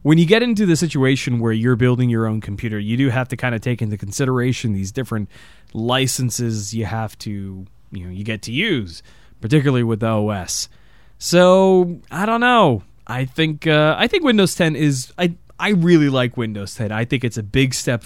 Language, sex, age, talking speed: English, male, 20-39, 205 wpm